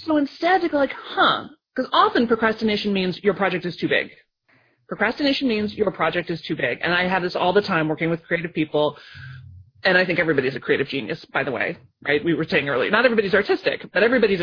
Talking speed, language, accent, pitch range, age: 220 wpm, English, American, 165-265 Hz, 30-49